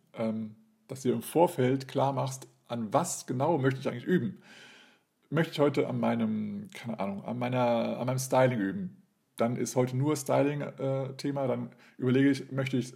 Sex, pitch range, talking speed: male, 120-155 Hz, 180 wpm